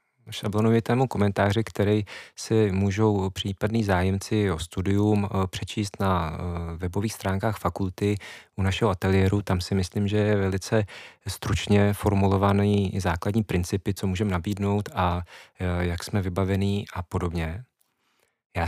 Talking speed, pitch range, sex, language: 120 wpm, 95-110 Hz, male, Czech